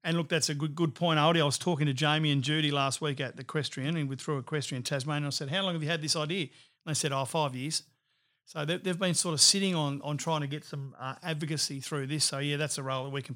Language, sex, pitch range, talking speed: English, male, 140-165 Hz, 285 wpm